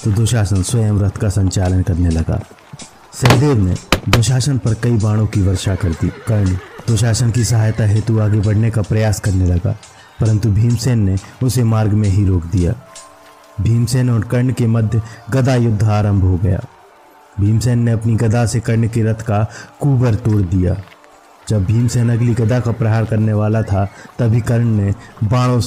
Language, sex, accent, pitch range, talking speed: Hindi, male, native, 100-115 Hz, 170 wpm